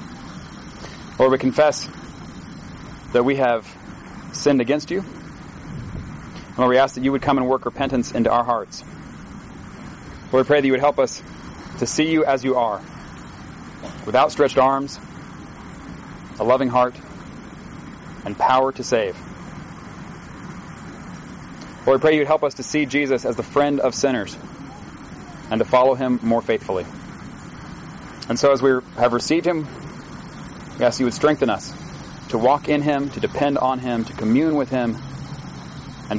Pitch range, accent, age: 120-145 Hz, American, 30-49